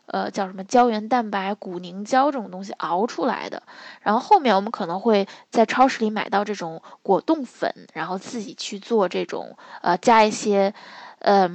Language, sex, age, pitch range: Chinese, female, 10-29, 195-260 Hz